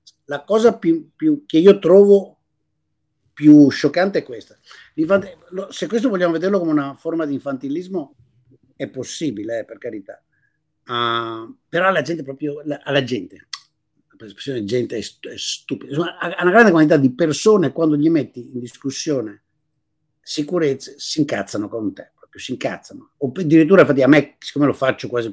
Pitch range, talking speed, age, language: 130-175 Hz, 155 wpm, 50-69, Italian